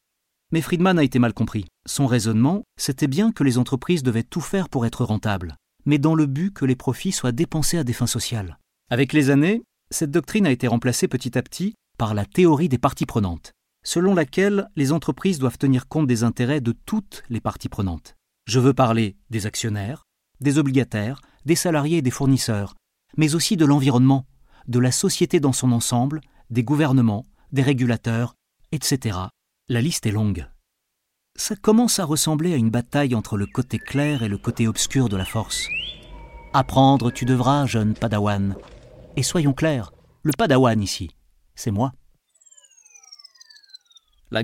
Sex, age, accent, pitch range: male, 40-59, French, 115-155 Hz